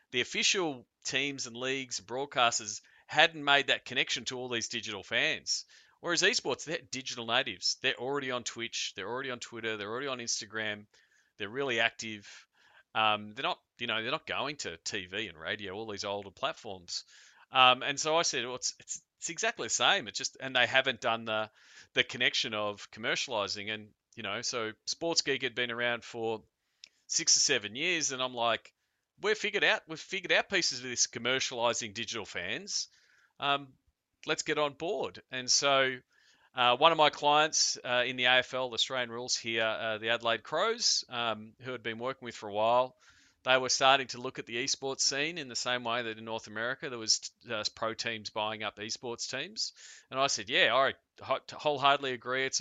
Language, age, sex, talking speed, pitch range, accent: English, 40-59, male, 195 wpm, 115-135 Hz, Australian